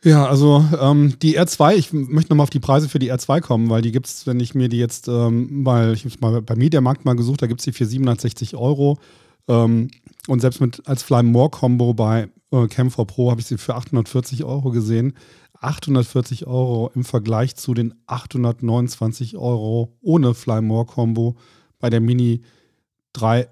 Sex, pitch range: male, 115-140 Hz